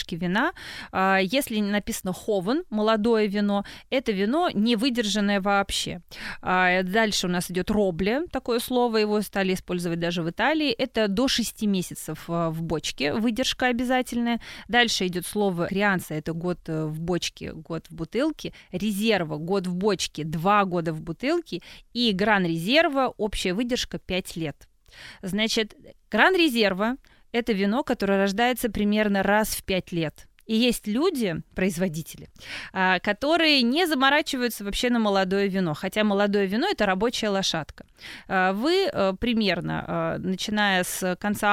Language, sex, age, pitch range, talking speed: Russian, female, 20-39, 185-235 Hz, 130 wpm